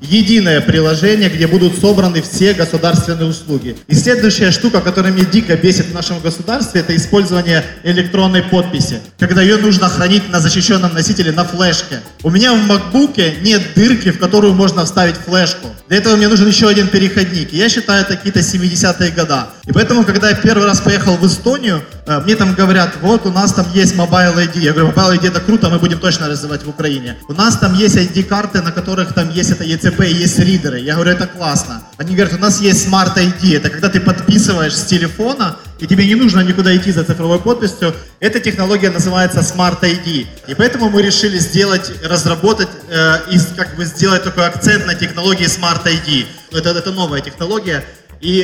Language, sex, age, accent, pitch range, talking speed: Ukrainian, male, 20-39, native, 170-200 Hz, 190 wpm